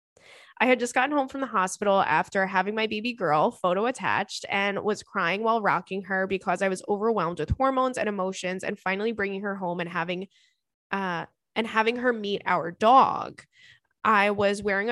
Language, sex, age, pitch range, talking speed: English, female, 20-39, 190-230 Hz, 185 wpm